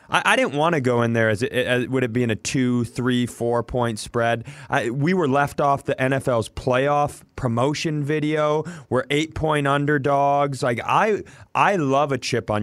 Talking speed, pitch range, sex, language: 195 wpm, 110-135 Hz, male, English